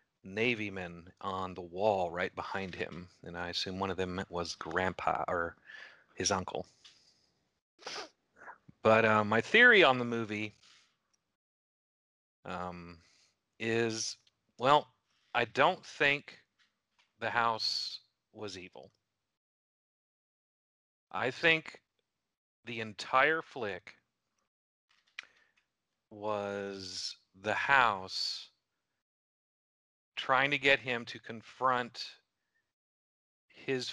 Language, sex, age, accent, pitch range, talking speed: English, male, 40-59, American, 95-120 Hz, 90 wpm